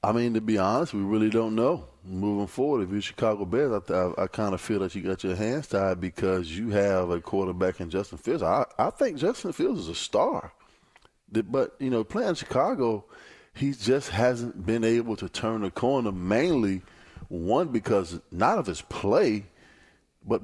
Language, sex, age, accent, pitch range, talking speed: English, male, 20-39, American, 95-120 Hz, 195 wpm